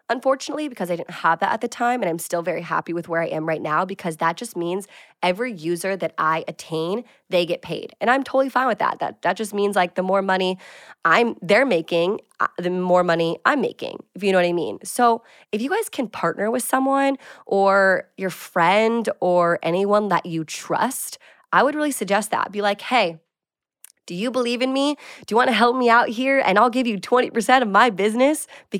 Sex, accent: female, American